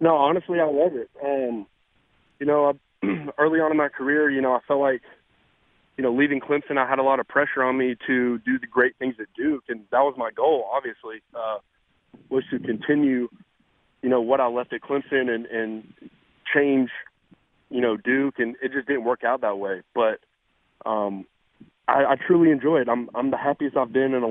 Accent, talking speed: American, 205 wpm